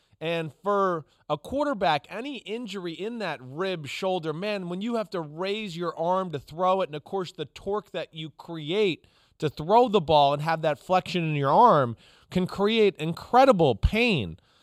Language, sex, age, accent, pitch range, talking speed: English, male, 30-49, American, 155-205 Hz, 180 wpm